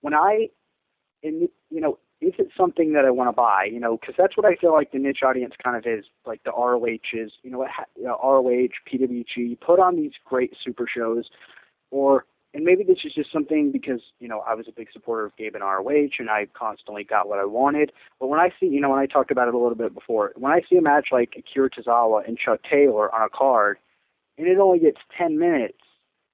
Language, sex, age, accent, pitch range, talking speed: English, male, 30-49, American, 125-160 Hz, 230 wpm